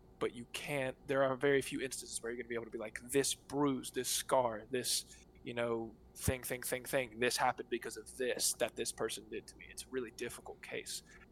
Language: English